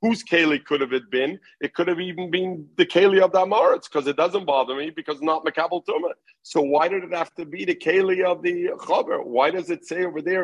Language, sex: English, male